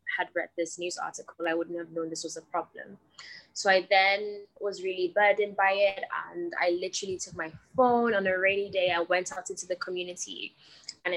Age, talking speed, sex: 10-29, 205 wpm, female